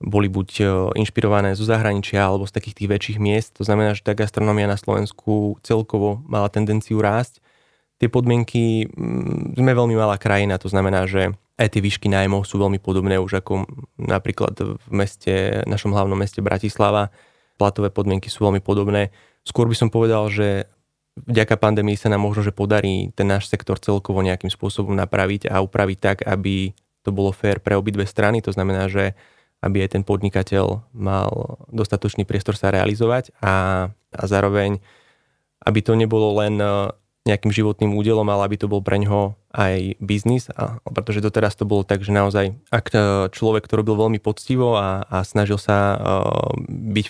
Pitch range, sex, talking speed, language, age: 100-110 Hz, male, 165 wpm, Slovak, 20-39